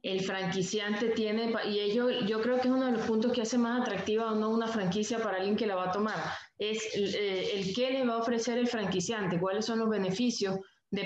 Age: 20-39